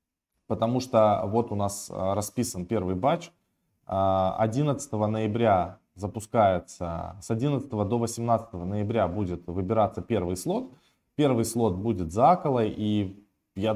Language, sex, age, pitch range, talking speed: Russian, male, 20-39, 95-115 Hz, 120 wpm